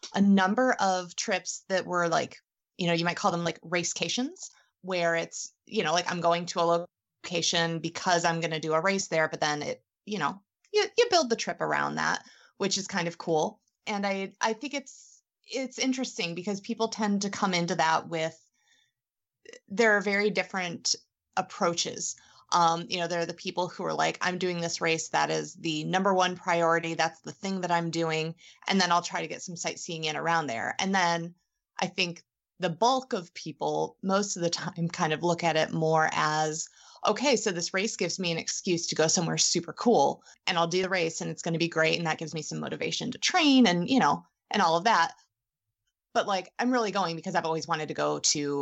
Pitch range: 165-200 Hz